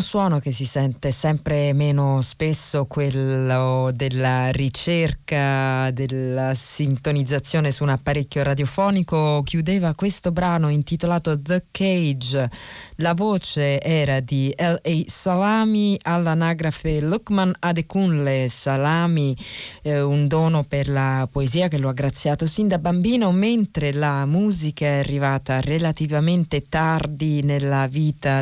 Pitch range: 140-175 Hz